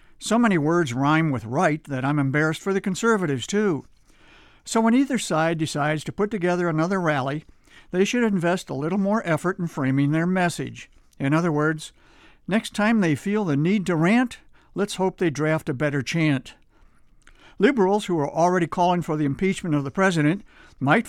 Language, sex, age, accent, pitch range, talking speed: English, male, 60-79, American, 145-190 Hz, 180 wpm